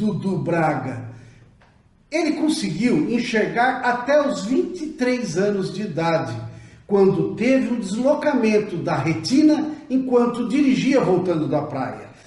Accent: Brazilian